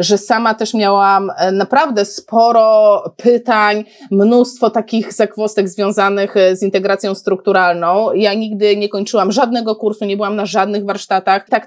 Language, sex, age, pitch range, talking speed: Polish, female, 20-39, 185-240 Hz, 135 wpm